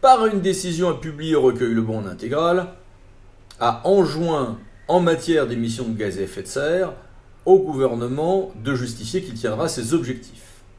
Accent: French